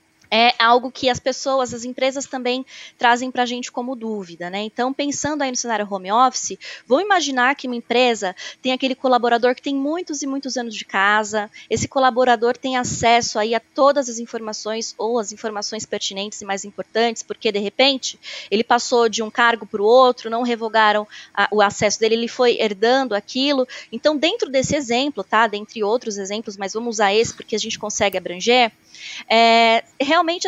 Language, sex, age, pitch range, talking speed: Portuguese, female, 20-39, 225-275 Hz, 180 wpm